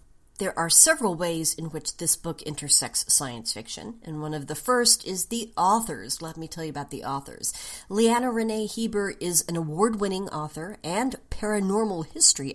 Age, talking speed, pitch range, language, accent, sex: 40-59, 170 wpm, 150-215 Hz, English, American, female